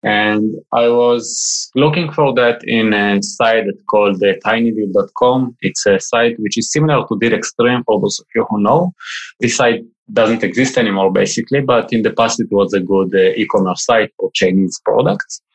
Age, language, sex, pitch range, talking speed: 20-39, English, male, 100-130 Hz, 185 wpm